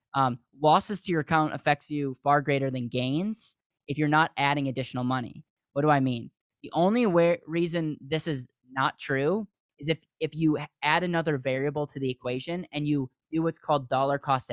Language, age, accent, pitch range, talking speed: English, 10-29, American, 130-160 Hz, 185 wpm